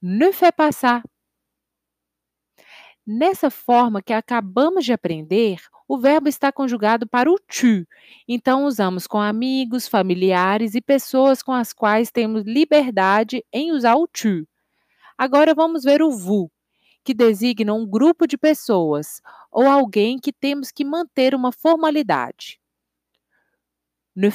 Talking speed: 125 wpm